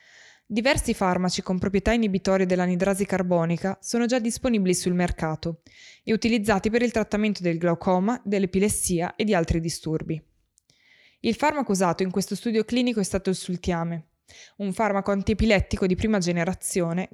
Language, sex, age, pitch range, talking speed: Italian, female, 20-39, 175-225 Hz, 145 wpm